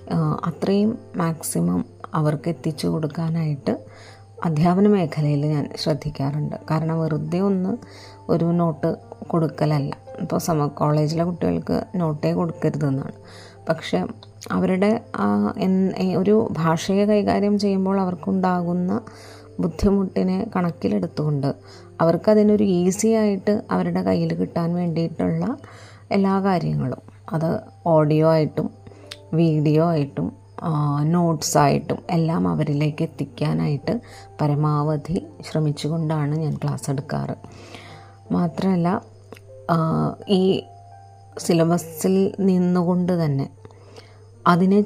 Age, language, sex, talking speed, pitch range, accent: 30-49, Malayalam, female, 80 wpm, 135-180 Hz, native